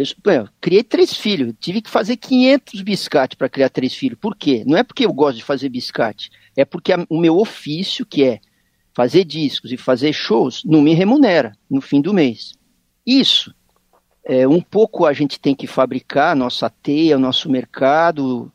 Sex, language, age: male, Portuguese, 50-69